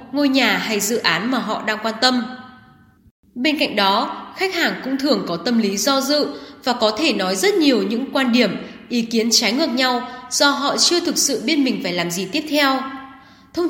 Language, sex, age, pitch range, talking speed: Vietnamese, female, 10-29, 215-290 Hz, 215 wpm